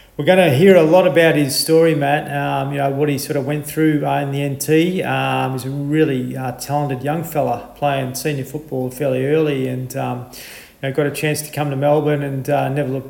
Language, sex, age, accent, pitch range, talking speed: English, male, 40-59, Australian, 130-150 Hz, 235 wpm